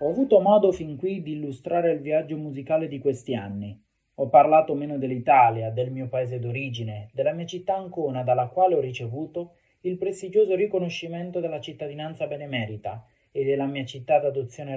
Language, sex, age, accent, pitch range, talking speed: Italian, male, 30-49, native, 120-155 Hz, 165 wpm